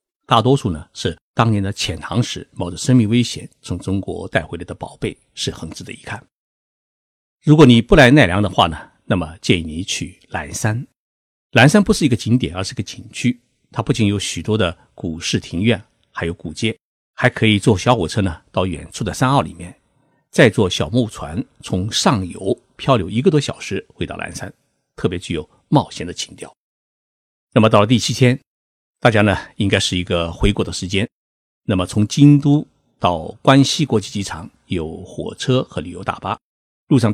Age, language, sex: 50-69, Chinese, male